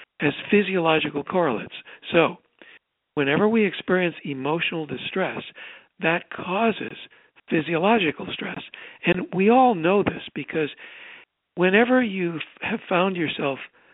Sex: male